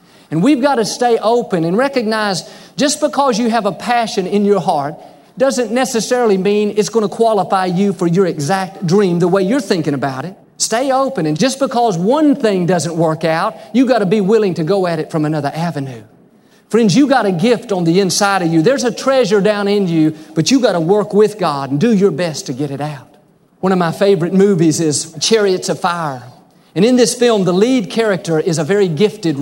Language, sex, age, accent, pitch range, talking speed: English, male, 50-69, American, 165-220 Hz, 220 wpm